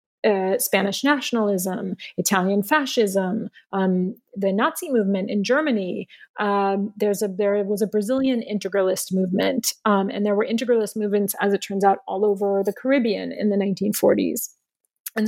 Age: 30-49